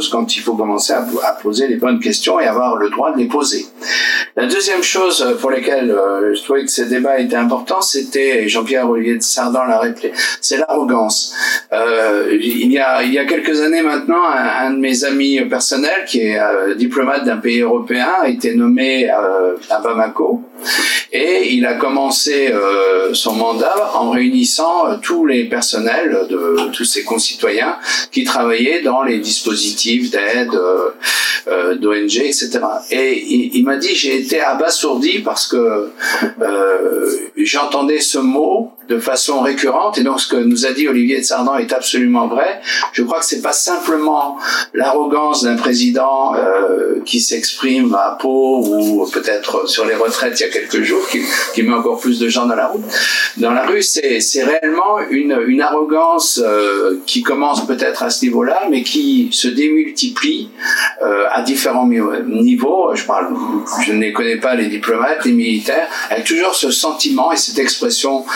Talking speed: 175 wpm